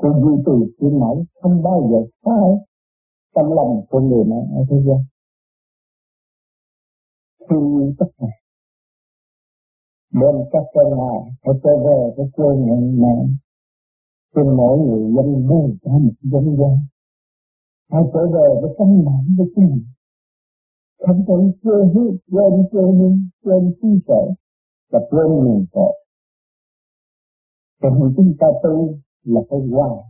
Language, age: Vietnamese, 60-79